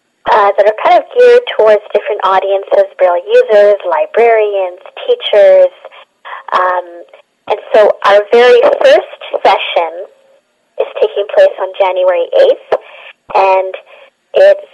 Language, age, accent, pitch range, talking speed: English, 30-49, American, 190-285 Hz, 115 wpm